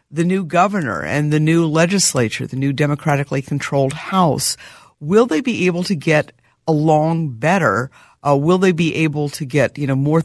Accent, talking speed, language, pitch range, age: American, 175 wpm, English, 135-165 Hz, 50-69